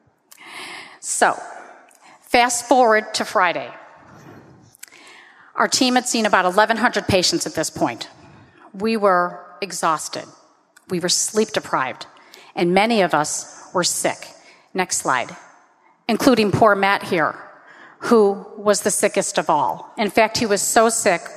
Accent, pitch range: American, 180-230 Hz